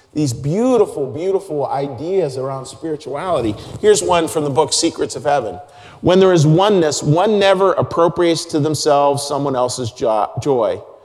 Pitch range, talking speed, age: 140-195 Hz, 140 wpm, 40-59